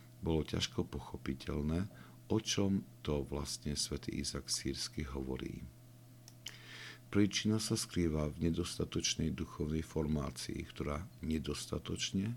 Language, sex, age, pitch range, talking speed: Slovak, male, 50-69, 70-95 Hz, 95 wpm